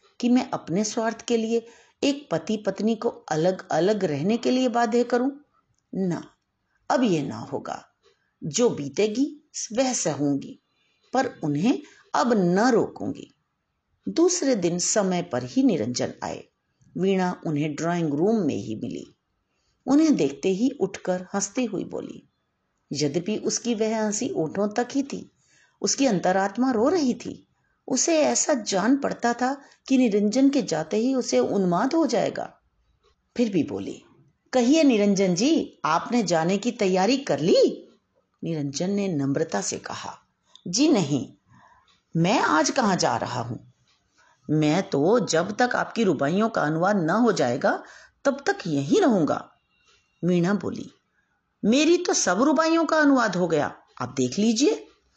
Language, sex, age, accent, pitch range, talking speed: Hindi, female, 50-69, native, 180-260 Hz, 140 wpm